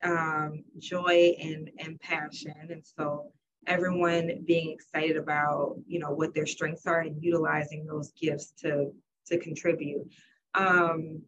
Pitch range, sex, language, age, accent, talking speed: 160-200 Hz, female, English, 20-39, American, 135 wpm